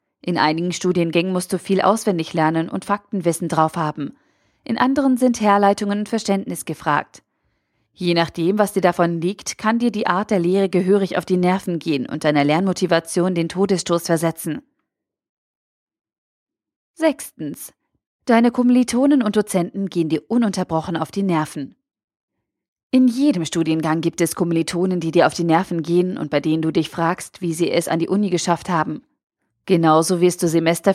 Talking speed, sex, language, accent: 160 wpm, female, German, German